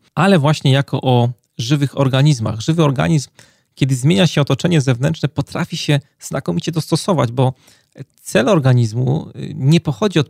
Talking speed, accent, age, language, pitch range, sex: 135 wpm, native, 30-49, Polish, 125-150 Hz, male